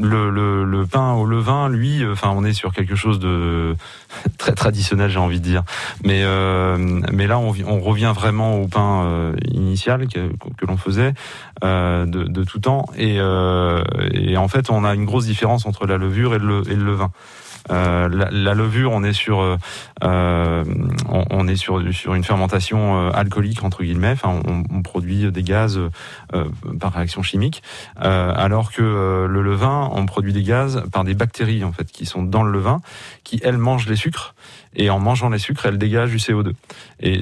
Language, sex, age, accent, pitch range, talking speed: French, male, 30-49, French, 95-115 Hz, 200 wpm